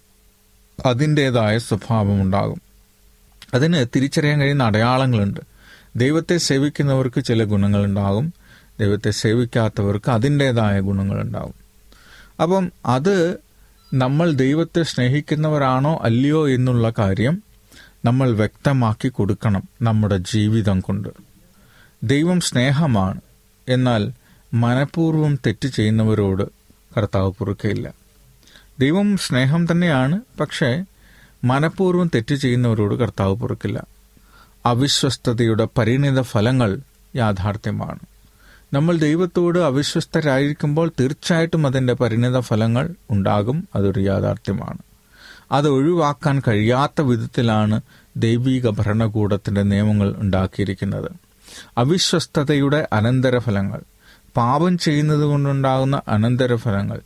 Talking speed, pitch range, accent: 75 wpm, 105-145 Hz, native